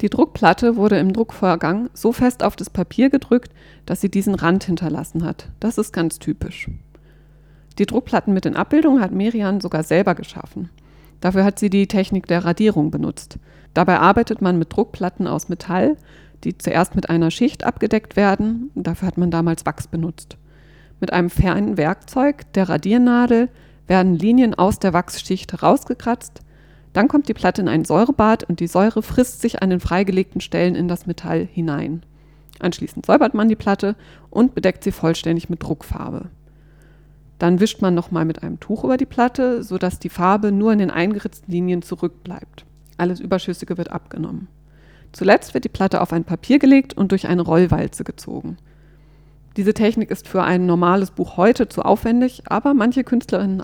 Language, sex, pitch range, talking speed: German, female, 165-215 Hz, 170 wpm